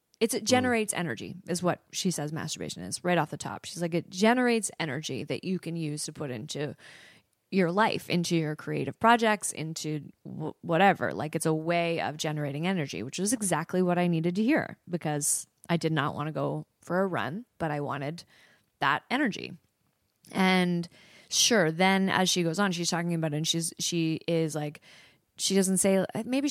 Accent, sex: American, female